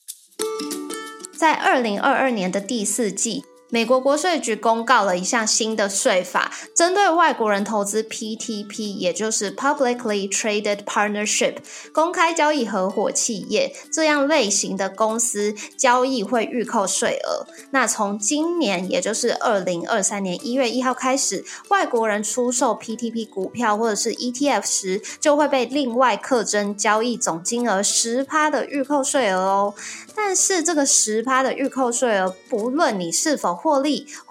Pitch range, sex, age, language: 205-275 Hz, female, 20-39, Chinese